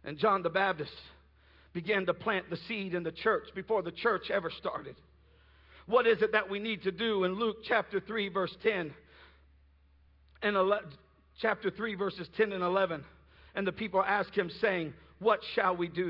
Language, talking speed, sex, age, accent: English, 185 wpm, male, 50-69, American